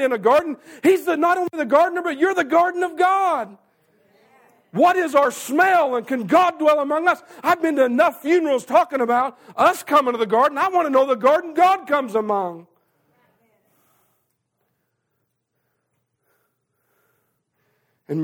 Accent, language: American, English